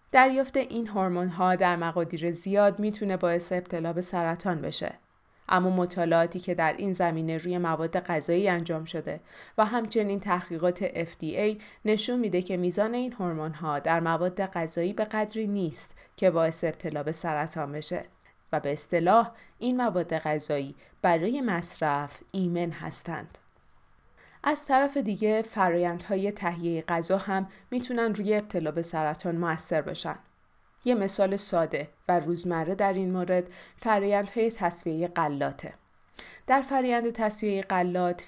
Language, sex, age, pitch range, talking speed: Persian, female, 20-39, 165-210 Hz, 135 wpm